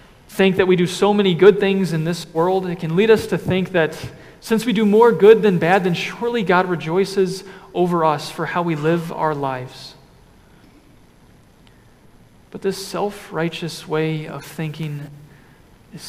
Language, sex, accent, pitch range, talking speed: English, male, American, 155-195 Hz, 165 wpm